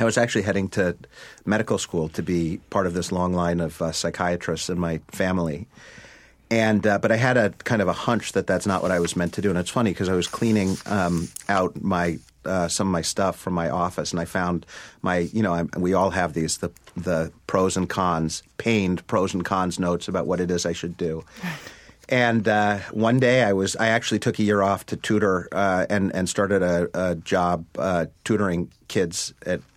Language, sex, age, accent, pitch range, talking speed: English, male, 40-59, American, 85-105 Hz, 220 wpm